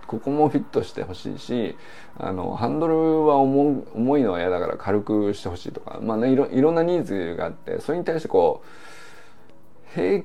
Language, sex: Japanese, male